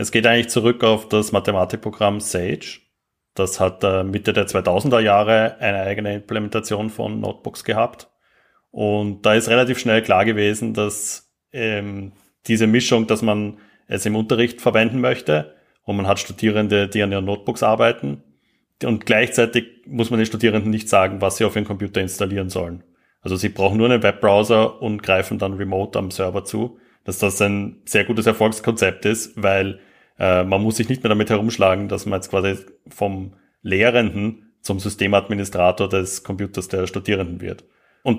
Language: German